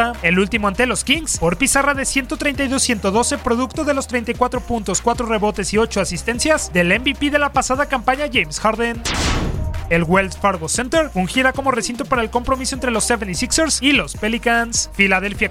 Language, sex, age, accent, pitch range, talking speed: Spanish, male, 30-49, Mexican, 200-265 Hz, 175 wpm